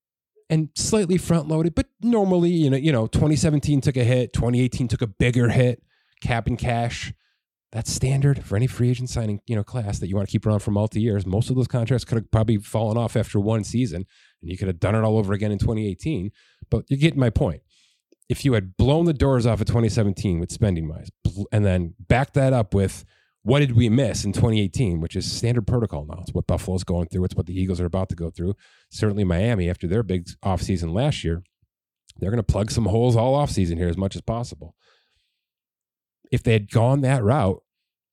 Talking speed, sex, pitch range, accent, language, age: 215 wpm, male, 100-130 Hz, American, English, 30-49